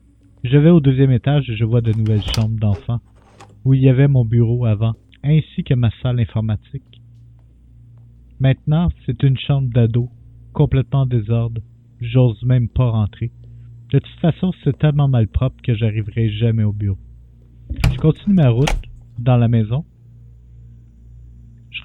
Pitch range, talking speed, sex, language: 105-135 Hz, 150 wpm, male, French